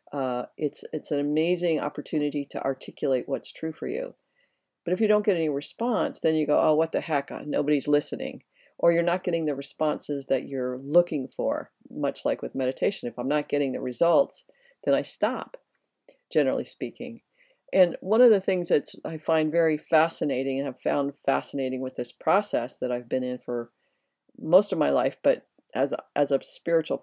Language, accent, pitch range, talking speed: English, American, 135-170 Hz, 190 wpm